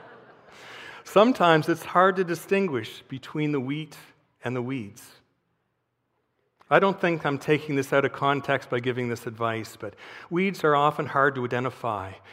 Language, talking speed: English, 150 wpm